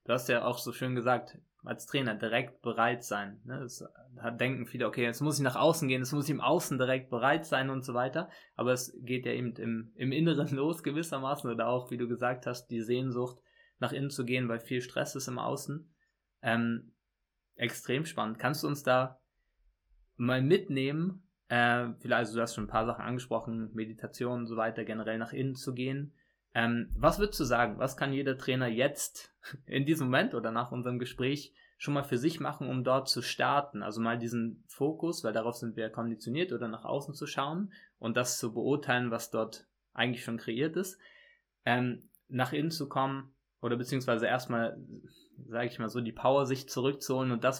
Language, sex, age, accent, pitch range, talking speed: German, male, 20-39, German, 115-140 Hz, 200 wpm